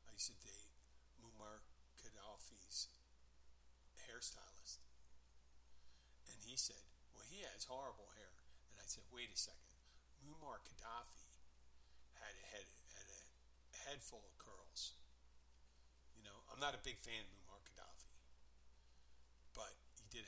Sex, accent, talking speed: male, American, 125 wpm